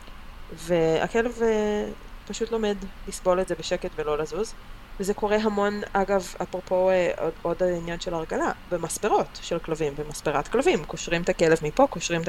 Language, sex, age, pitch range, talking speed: Hebrew, female, 20-39, 160-205 Hz, 145 wpm